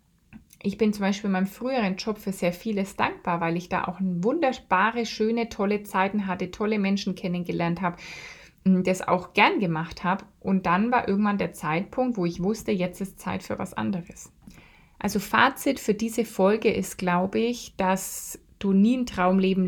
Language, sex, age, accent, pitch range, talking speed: German, female, 20-39, German, 180-210 Hz, 175 wpm